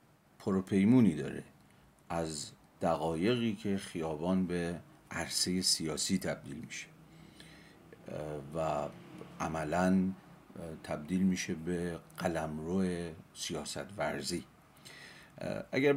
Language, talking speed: Persian, 75 wpm